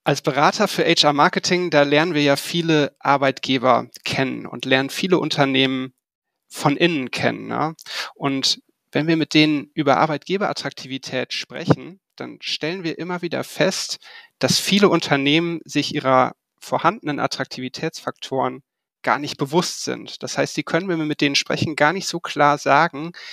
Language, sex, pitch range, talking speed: German, male, 140-170 Hz, 150 wpm